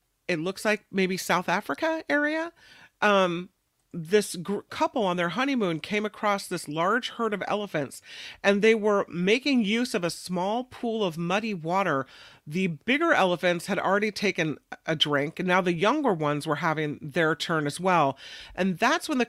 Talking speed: 170 wpm